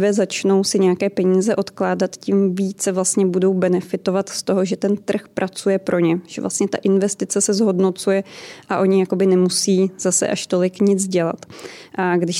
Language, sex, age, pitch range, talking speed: Czech, female, 20-39, 185-205 Hz, 170 wpm